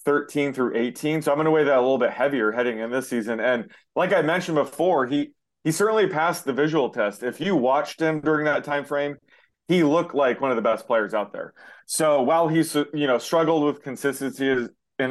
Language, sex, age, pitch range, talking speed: English, male, 30-49, 120-155 Hz, 225 wpm